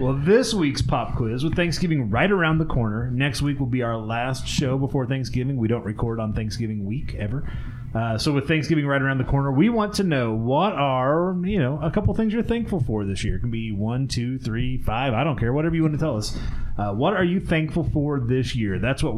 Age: 30-49